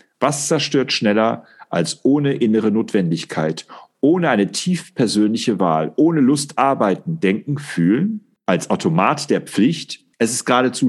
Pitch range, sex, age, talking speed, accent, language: 100-150 Hz, male, 40-59, 125 wpm, German, German